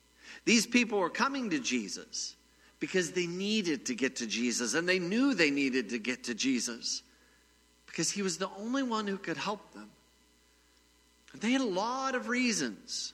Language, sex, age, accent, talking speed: English, male, 50-69, American, 180 wpm